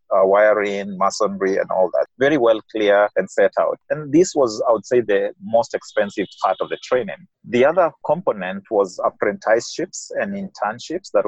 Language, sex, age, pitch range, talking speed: English, male, 30-49, 95-145 Hz, 175 wpm